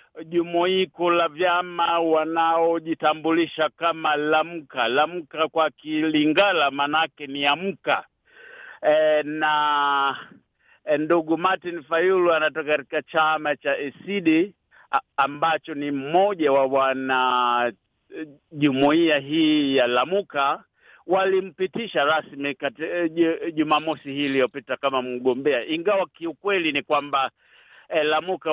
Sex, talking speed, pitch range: male, 95 wpm, 150-190 Hz